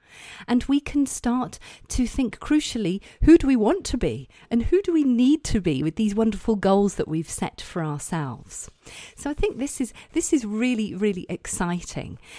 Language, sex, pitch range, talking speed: English, female, 155-230 Hz, 190 wpm